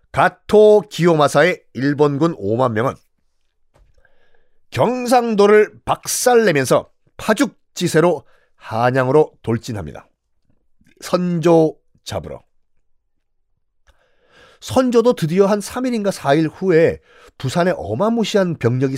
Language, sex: Korean, male